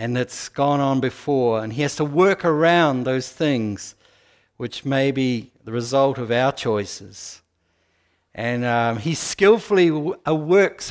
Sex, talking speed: male, 145 wpm